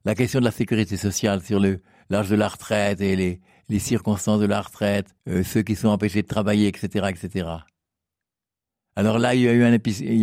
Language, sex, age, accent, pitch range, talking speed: French, male, 60-79, French, 100-120 Hz, 215 wpm